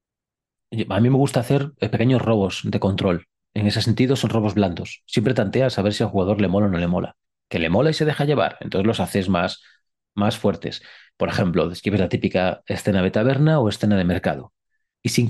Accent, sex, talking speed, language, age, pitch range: Spanish, male, 215 wpm, Spanish, 40-59, 105-140 Hz